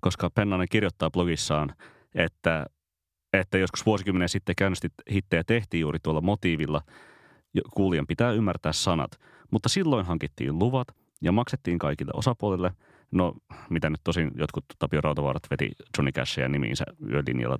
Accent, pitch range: native, 80-100 Hz